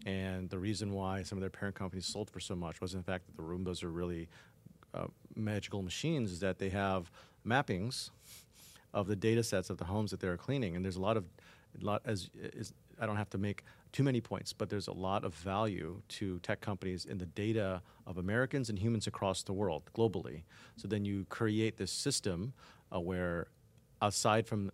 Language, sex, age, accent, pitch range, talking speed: English, male, 40-59, American, 95-115 Hz, 210 wpm